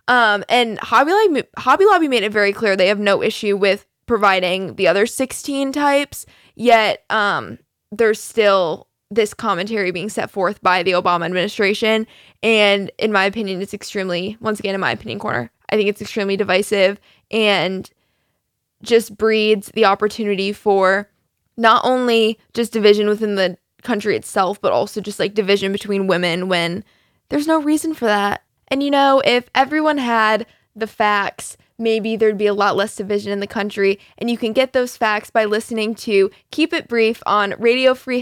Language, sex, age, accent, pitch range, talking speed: English, female, 10-29, American, 200-230 Hz, 170 wpm